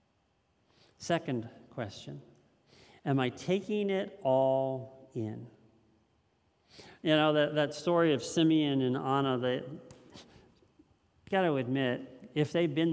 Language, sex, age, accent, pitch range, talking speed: English, male, 50-69, American, 125-170 Hz, 110 wpm